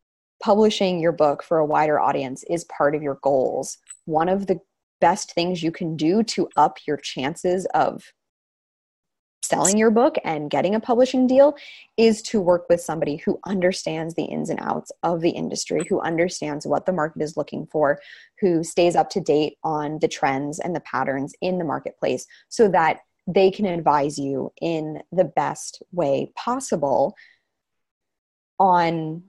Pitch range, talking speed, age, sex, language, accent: 150-185 Hz, 165 wpm, 20-39, female, English, American